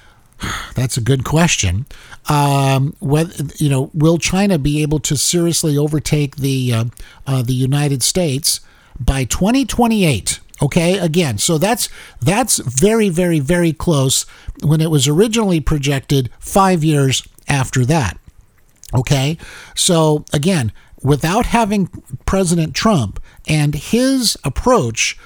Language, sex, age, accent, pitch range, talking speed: English, male, 50-69, American, 130-180 Hz, 120 wpm